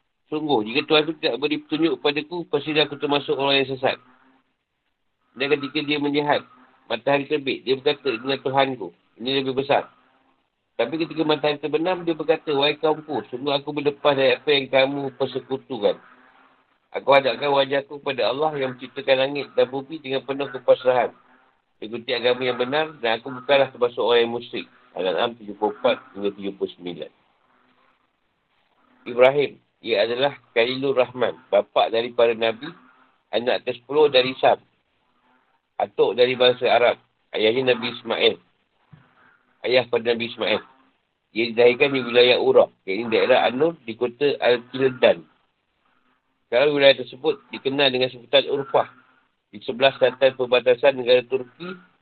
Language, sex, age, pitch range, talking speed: Malay, male, 50-69, 125-155 Hz, 140 wpm